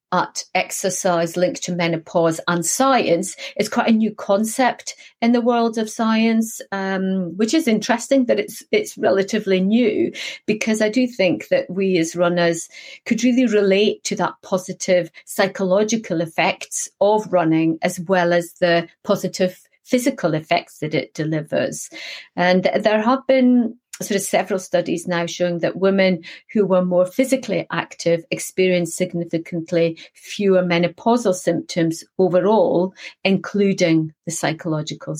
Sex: female